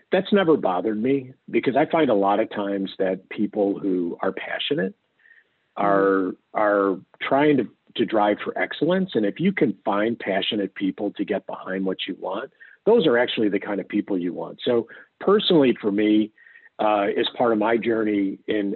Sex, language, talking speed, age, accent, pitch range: male, English, 180 wpm, 50-69, American, 95-145 Hz